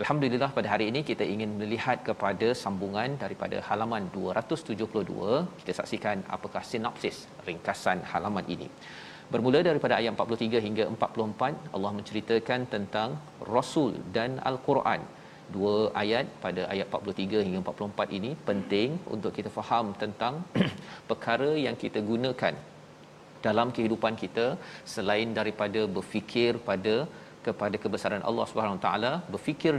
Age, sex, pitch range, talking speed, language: 40-59, male, 105-120 Hz, 125 wpm, Malayalam